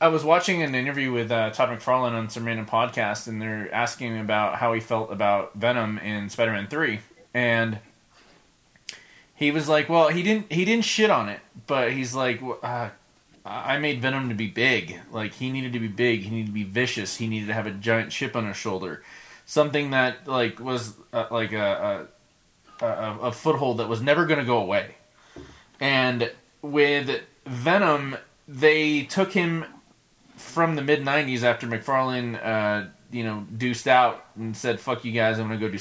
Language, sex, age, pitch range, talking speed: English, male, 20-39, 115-150 Hz, 195 wpm